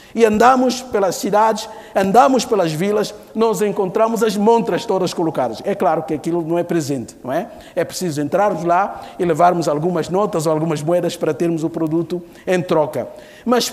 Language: Portuguese